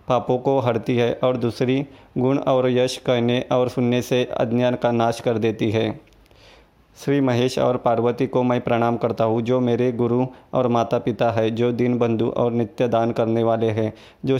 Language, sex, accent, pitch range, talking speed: Hindi, male, native, 120-130 Hz, 190 wpm